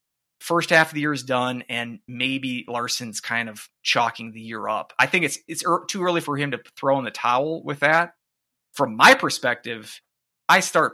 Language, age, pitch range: English, 20-39, 120-150 Hz